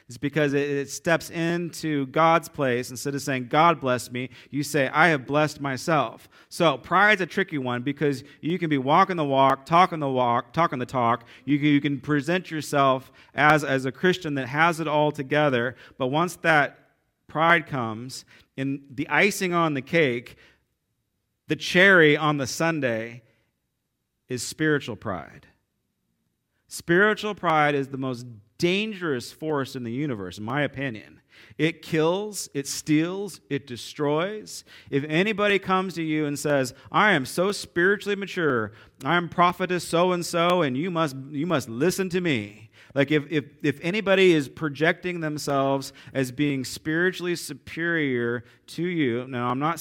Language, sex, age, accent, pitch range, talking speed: English, male, 40-59, American, 130-165 Hz, 155 wpm